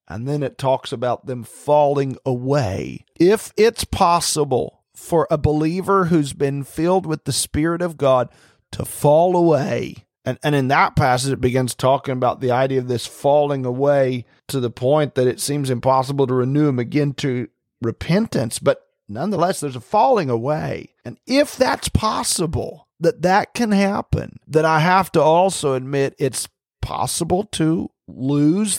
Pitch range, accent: 125-160 Hz, American